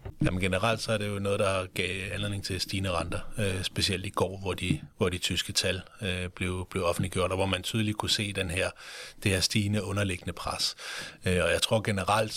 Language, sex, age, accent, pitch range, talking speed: Danish, male, 30-49, native, 90-105 Hz, 225 wpm